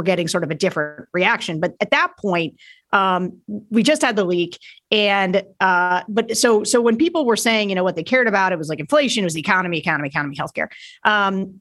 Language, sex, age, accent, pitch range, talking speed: English, female, 40-59, American, 185-245 Hz, 220 wpm